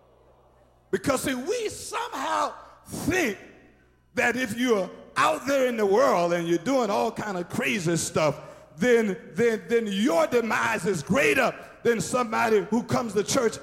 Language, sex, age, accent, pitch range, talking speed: English, male, 50-69, American, 150-230 Hz, 150 wpm